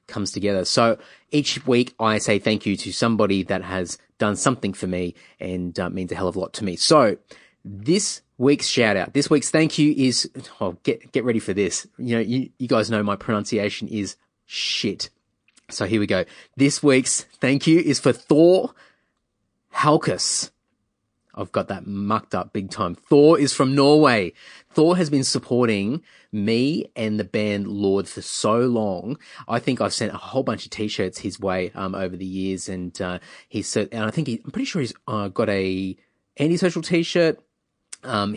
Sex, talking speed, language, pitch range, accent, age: male, 195 wpm, English, 100-135 Hz, Australian, 30-49